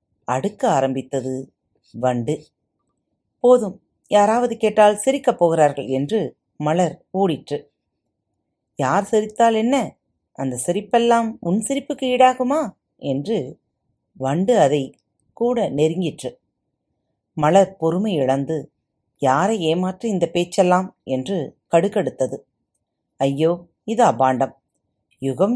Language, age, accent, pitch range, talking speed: Tamil, 40-59, native, 135-215 Hz, 85 wpm